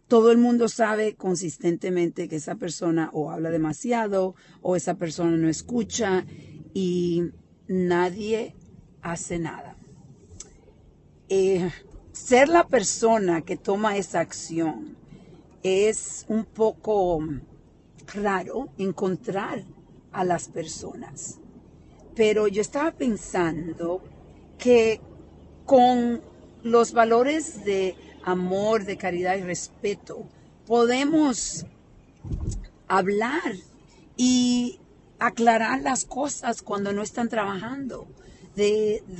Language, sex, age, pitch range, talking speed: Spanish, female, 50-69, 175-230 Hz, 95 wpm